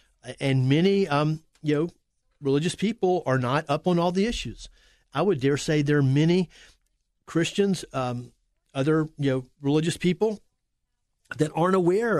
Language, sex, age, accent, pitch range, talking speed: English, male, 50-69, American, 140-175 Hz, 150 wpm